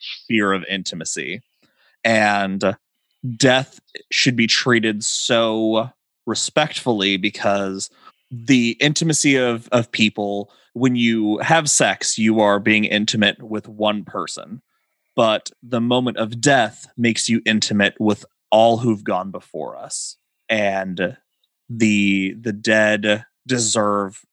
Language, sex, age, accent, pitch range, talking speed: English, male, 30-49, American, 100-120 Hz, 115 wpm